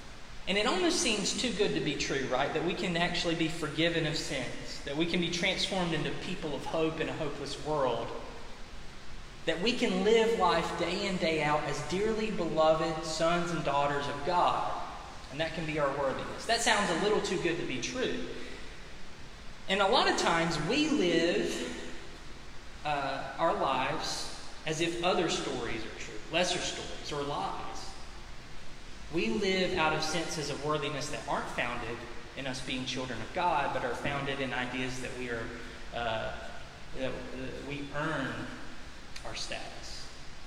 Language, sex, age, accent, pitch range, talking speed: English, male, 20-39, American, 125-170 Hz, 170 wpm